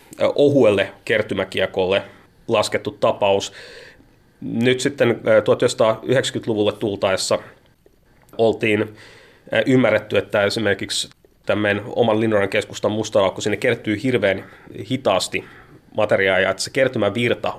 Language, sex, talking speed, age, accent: Finnish, male, 80 wpm, 30-49, native